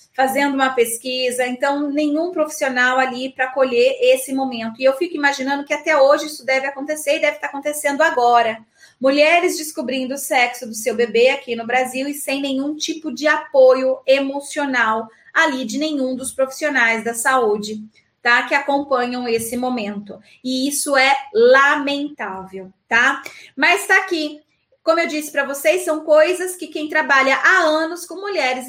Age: 20-39